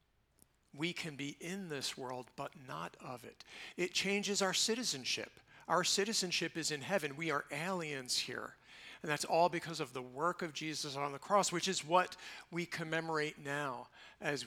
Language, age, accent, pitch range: English, 50-69, American, 145-185 Hz